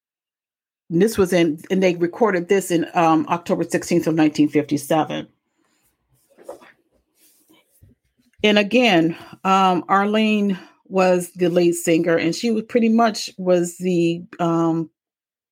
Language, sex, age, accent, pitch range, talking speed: English, female, 40-59, American, 170-210 Hz, 115 wpm